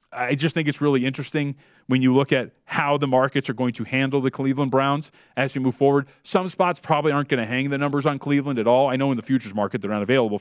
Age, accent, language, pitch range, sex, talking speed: 30-49, American, English, 120-145 Hz, male, 265 wpm